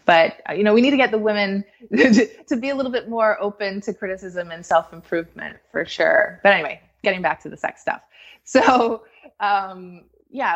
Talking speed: 190 wpm